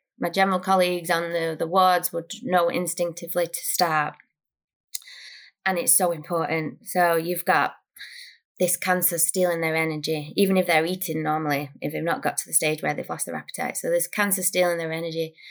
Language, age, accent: English, 20-39, British